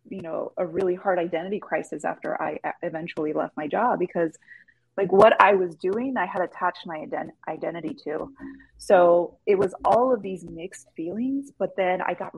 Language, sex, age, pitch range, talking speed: English, female, 30-49, 170-215 Hz, 180 wpm